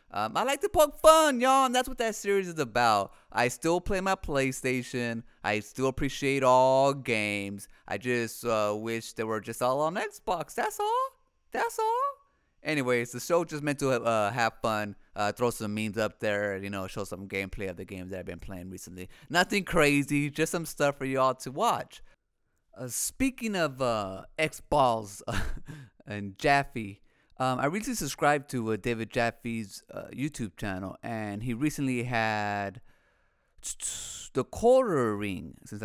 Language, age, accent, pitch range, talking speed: English, 30-49, American, 110-175 Hz, 170 wpm